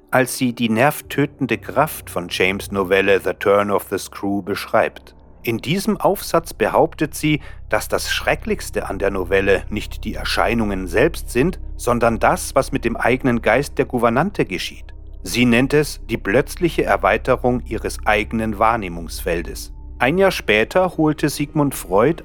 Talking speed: 150 wpm